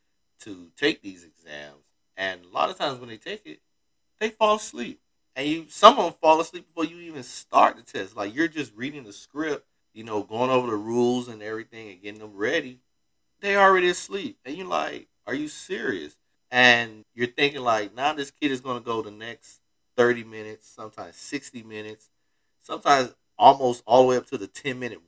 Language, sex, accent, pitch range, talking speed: English, male, American, 90-135 Hz, 200 wpm